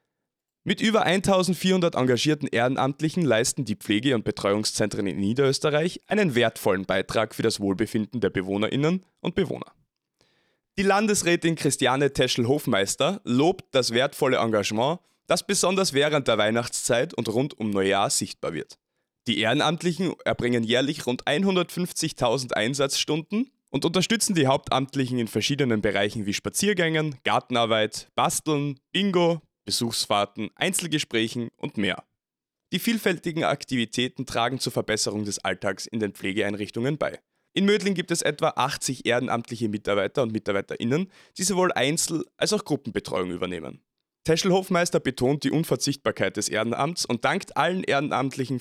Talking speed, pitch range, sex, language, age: 125 wpm, 110-170 Hz, male, German, 20-39